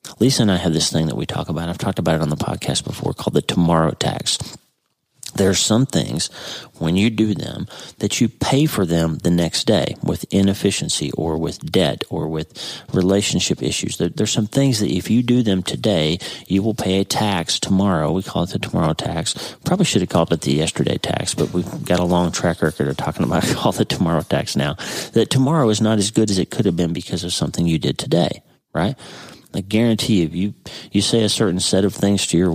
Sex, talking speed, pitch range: male, 230 wpm, 80-95 Hz